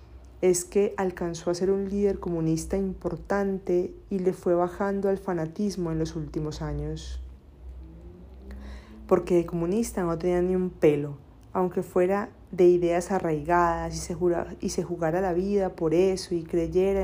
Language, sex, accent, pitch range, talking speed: Spanish, female, Colombian, 155-190 Hz, 150 wpm